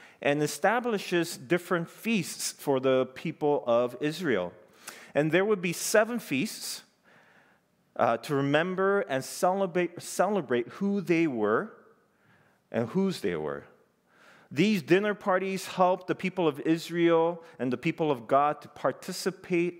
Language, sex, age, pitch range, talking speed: English, male, 40-59, 130-185 Hz, 130 wpm